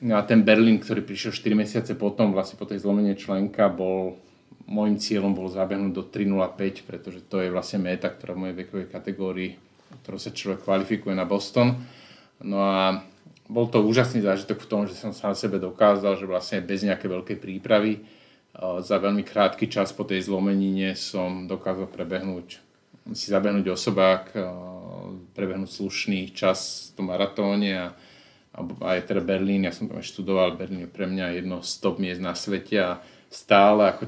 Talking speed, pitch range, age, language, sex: 175 wpm, 95-105 Hz, 30-49, Slovak, male